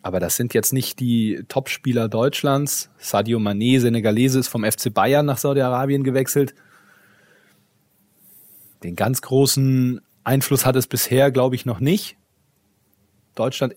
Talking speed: 130 wpm